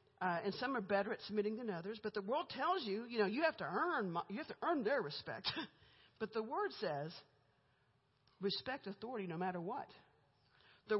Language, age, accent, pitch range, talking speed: English, 50-69, American, 185-245 Hz, 190 wpm